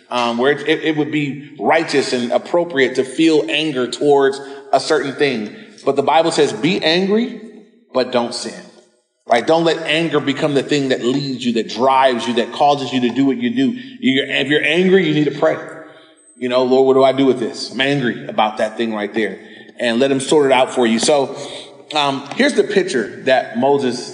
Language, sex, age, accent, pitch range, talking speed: English, male, 30-49, American, 130-165 Hz, 210 wpm